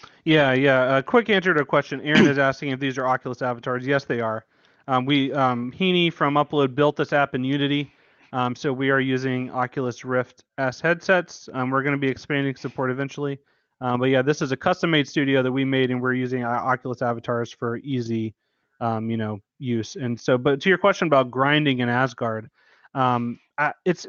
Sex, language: male, English